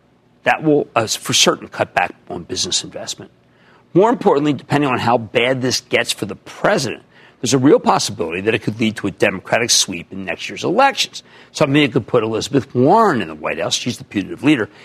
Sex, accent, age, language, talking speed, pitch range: male, American, 50-69, English, 205 wpm, 120-180 Hz